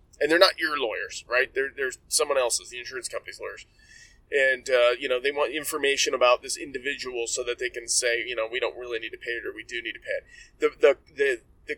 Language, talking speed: English, 240 wpm